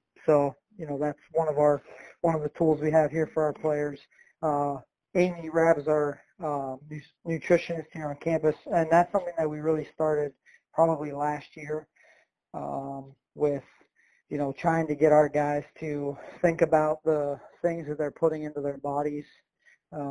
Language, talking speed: English, 175 wpm